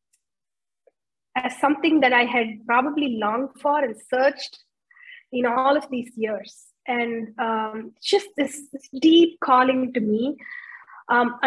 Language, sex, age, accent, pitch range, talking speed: English, female, 20-39, Indian, 240-300 Hz, 135 wpm